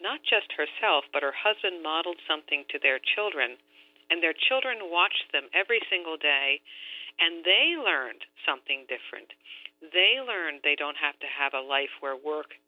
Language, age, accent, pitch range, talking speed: English, 50-69, American, 150-200 Hz, 165 wpm